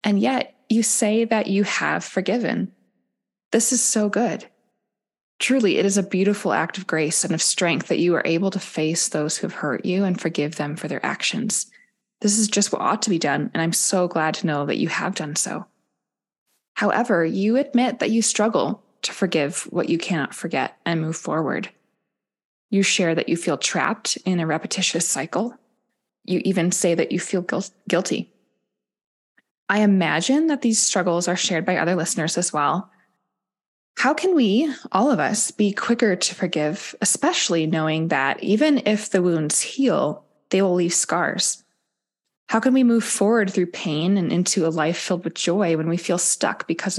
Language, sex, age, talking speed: English, female, 20-39, 185 wpm